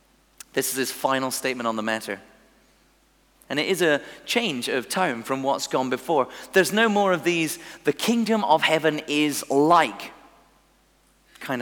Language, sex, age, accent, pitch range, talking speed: English, male, 40-59, British, 130-170 Hz, 160 wpm